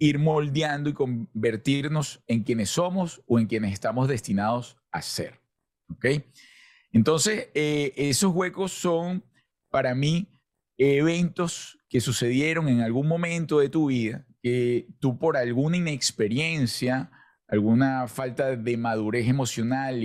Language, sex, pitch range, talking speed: Spanish, male, 115-150 Hz, 125 wpm